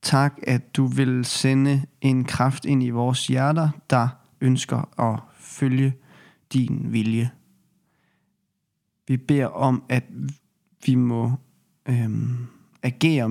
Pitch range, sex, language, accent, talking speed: 120-140 Hz, male, Danish, native, 110 wpm